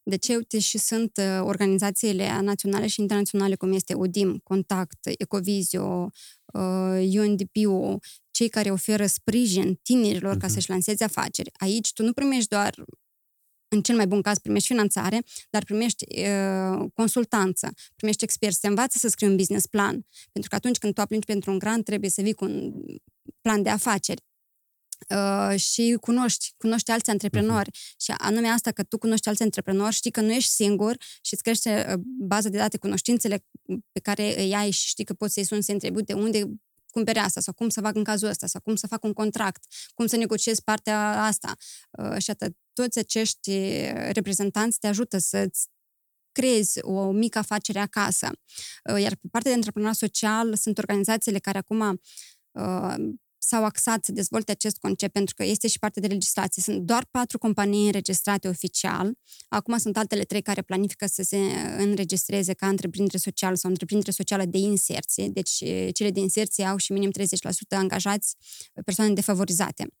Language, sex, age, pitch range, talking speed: Romanian, female, 20-39, 195-220 Hz, 170 wpm